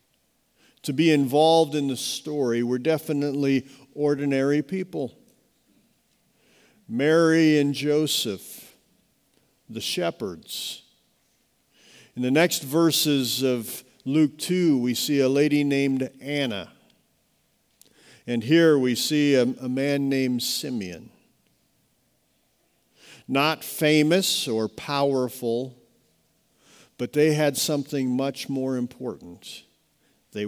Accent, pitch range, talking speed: American, 130-185 Hz, 95 wpm